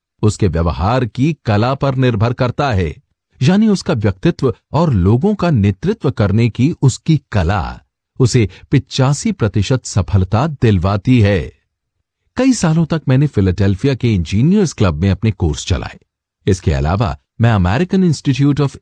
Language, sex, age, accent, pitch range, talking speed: English, male, 50-69, Indian, 100-155 Hz, 135 wpm